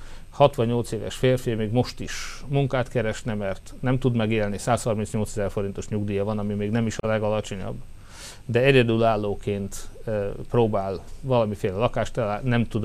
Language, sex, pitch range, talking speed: Hungarian, male, 100-120 Hz, 140 wpm